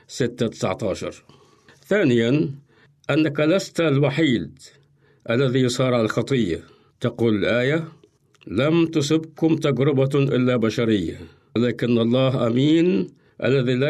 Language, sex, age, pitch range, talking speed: Arabic, male, 50-69, 120-145 Hz, 90 wpm